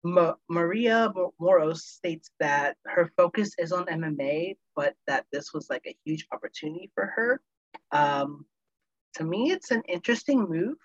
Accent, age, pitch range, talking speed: American, 30-49, 155-200 Hz, 150 wpm